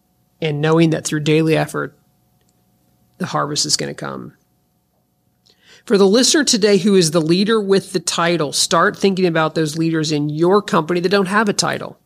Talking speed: 180 wpm